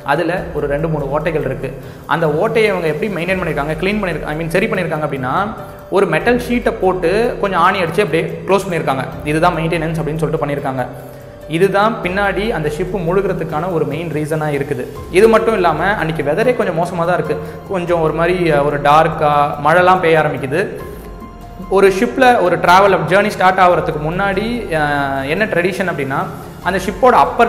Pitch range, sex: 145-185 Hz, male